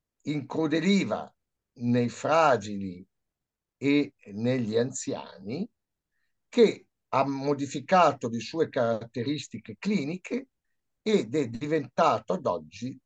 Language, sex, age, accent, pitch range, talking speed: Italian, male, 60-79, native, 120-160 Hz, 85 wpm